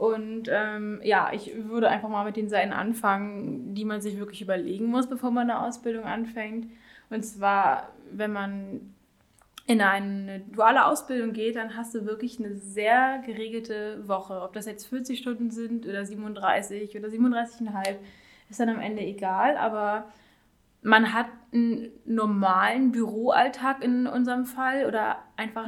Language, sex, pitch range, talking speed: German, female, 210-240 Hz, 150 wpm